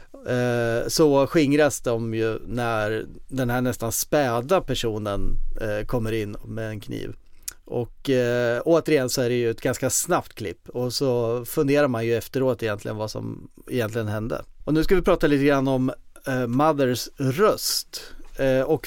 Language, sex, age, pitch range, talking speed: Swedish, male, 30-49, 115-145 Hz, 150 wpm